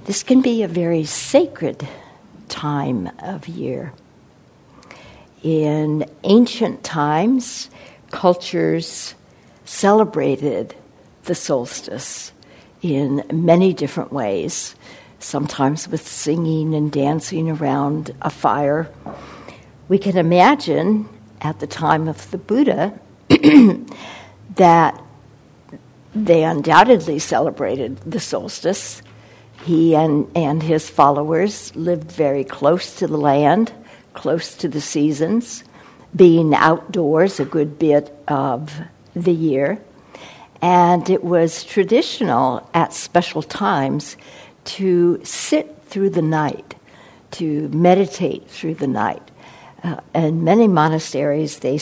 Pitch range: 145-185 Hz